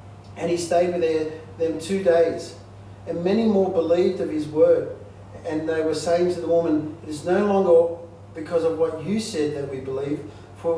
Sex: male